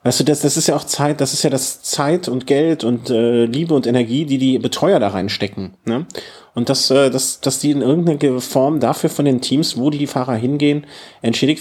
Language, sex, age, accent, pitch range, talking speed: German, male, 30-49, German, 120-155 Hz, 235 wpm